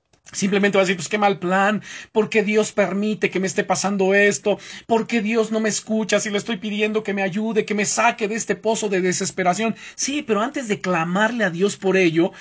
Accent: Mexican